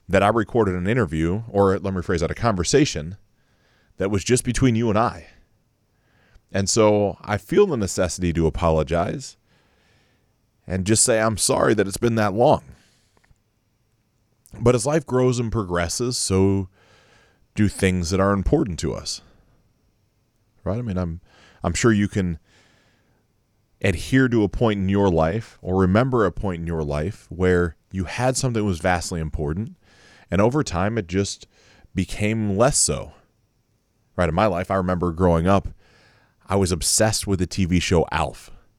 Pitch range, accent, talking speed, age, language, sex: 85-115 Hz, American, 160 wpm, 30-49, English, male